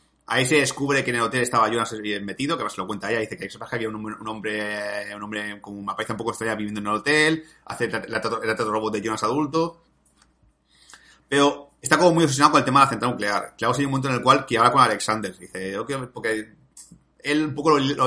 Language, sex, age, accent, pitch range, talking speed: Spanish, male, 30-49, Spanish, 110-145 Hz, 250 wpm